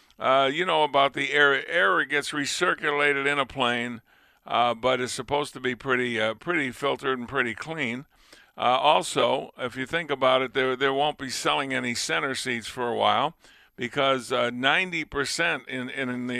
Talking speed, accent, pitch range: 185 wpm, American, 125-150 Hz